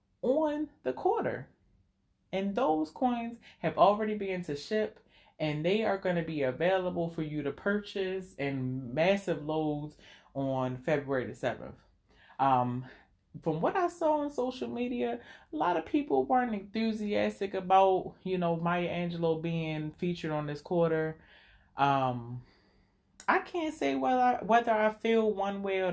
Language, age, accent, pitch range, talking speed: English, 30-49, American, 145-210 Hz, 150 wpm